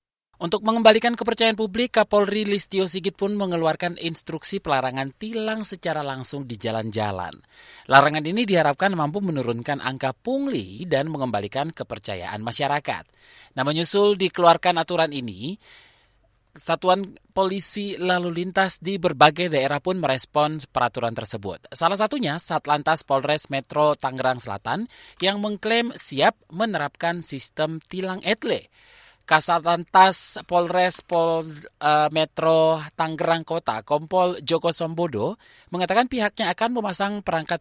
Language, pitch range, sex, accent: Indonesian, 135-195 Hz, male, native